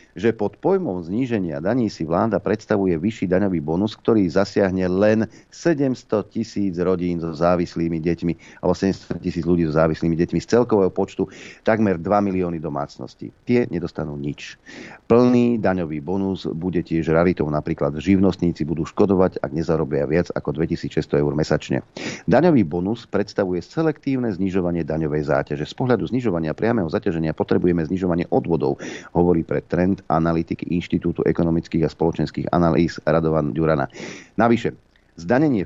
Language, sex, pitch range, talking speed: Slovak, male, 80-100 Hz, 140 wpm